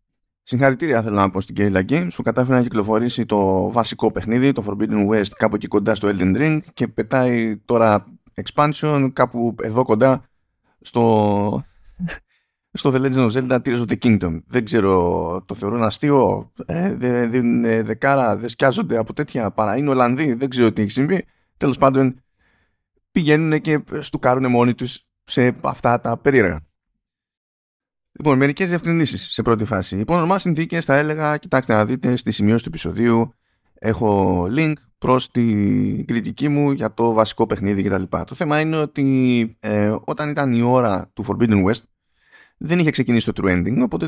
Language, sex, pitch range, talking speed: Greek, male, 105-140 Hz, 160 wpm